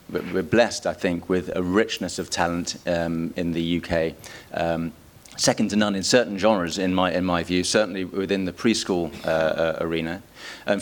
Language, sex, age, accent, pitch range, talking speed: English, male, 30-49, British, 85-95 Hz, 185 wpm